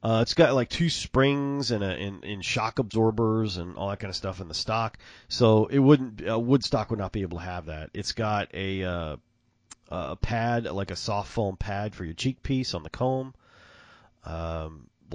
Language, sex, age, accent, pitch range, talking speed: English, male, 40-59, American, 90-115 Hz, 200 wpm